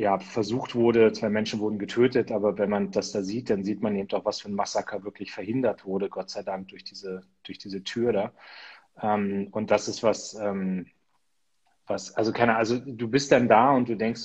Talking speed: 215 wpm